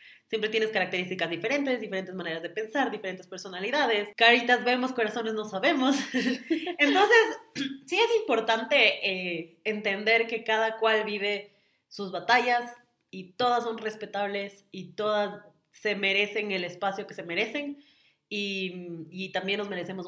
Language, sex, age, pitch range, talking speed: Spanish, female, 20-39, 185-235 Hz, 135 wpm